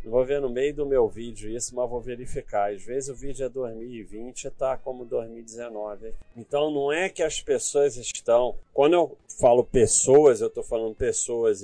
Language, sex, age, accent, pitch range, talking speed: Portuguese, male, 40-59, Brazilian, 105-140 Hz, 190 wpm